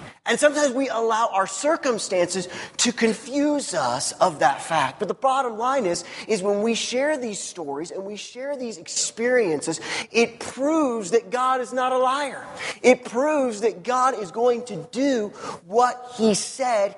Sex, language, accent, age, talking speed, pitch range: male, English, American, 30-49, 165 wpm, 160-235 Hz